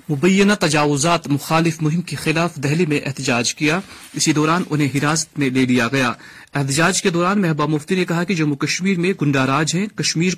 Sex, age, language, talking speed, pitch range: male, 30-49, Urdu, 190 wpm, 150-185 Hz